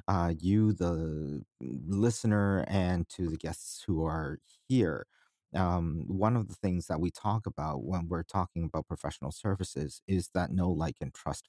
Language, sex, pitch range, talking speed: English, male, 85-100 Hz, 165 wpm